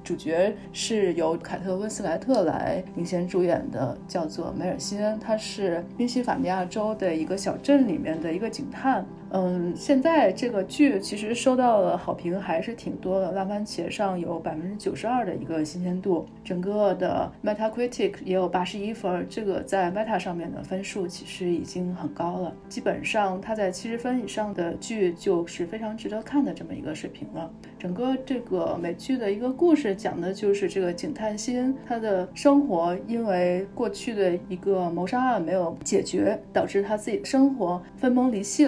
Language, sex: Chinese, female